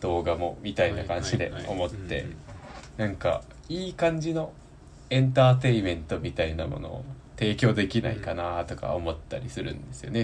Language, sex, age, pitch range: Japanese, male, 20-39, 90-130 Hz